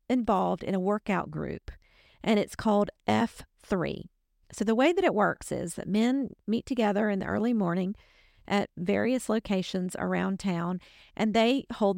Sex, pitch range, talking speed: female, 195-250 Hz, 160 wpm